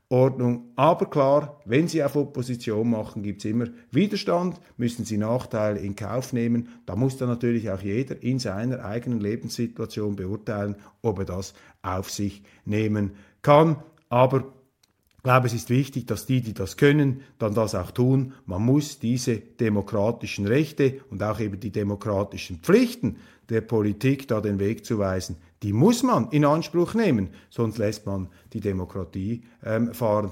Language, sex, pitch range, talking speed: German, male, 110-155 Hz, 160 wpm